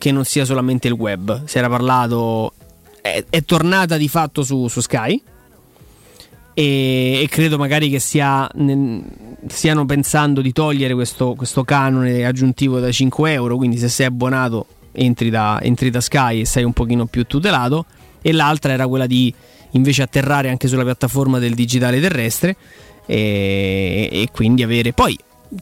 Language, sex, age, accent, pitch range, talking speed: Italian, male, 20-39, native, 125-155 Hz, 150 wpm